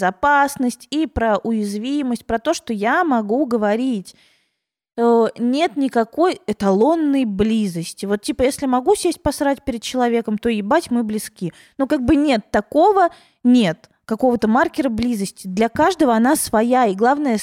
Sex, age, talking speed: female, 20-39, 140 wpm